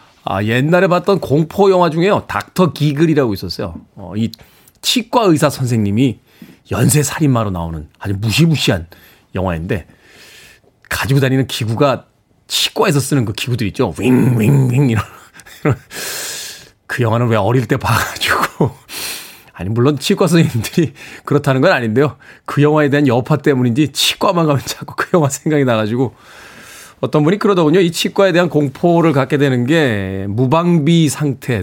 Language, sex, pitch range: Korean, male, 115-155 Hz